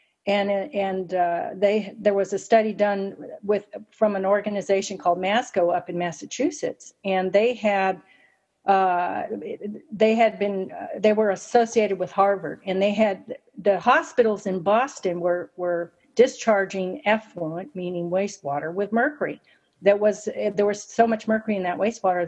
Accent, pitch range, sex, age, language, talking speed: American, 185-225 Hz, female, 50-69, English, 150 wpm